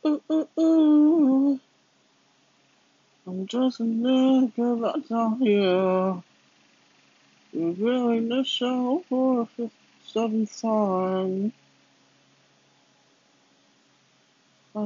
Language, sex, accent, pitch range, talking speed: English, male, American, 155-230 Hz, 75 wpm